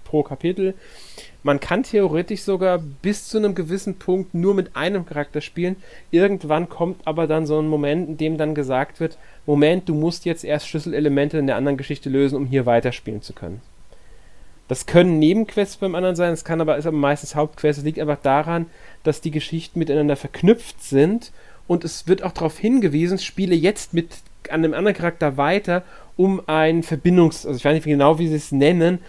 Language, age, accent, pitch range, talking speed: German, 30-49, German, 145-170 Hz, 190 wpm